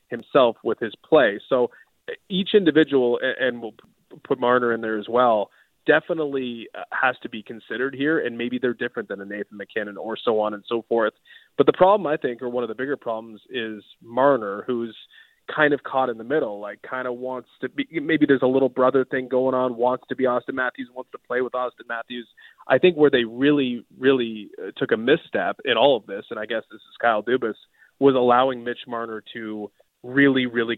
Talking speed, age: 210 wpm, 20-39